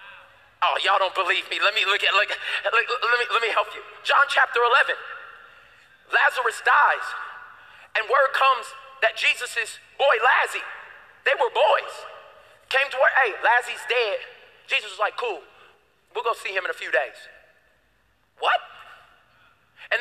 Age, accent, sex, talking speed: 40-59, American, male, 155 wpm